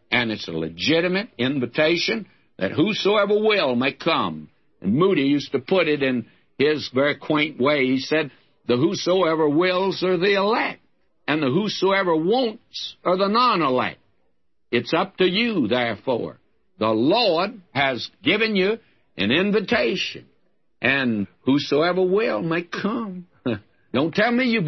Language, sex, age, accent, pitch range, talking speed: English, male, 60-79, American, 135-200 Hz, 140 wpm